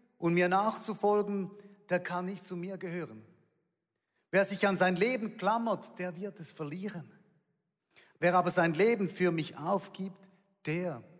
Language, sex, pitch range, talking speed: German, male, 160-210 Hz, 145 wpm